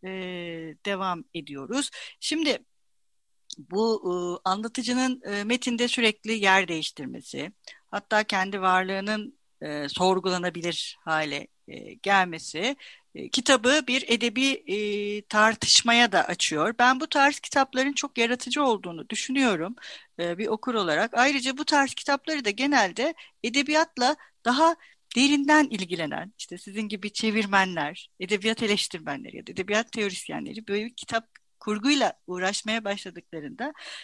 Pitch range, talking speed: 195-270 Hz, 115 wpm